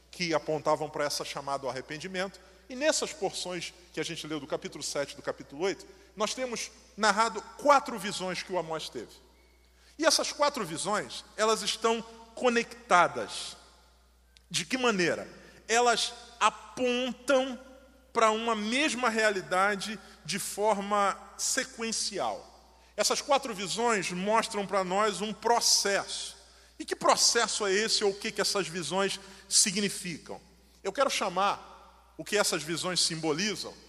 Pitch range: 170-225 Hz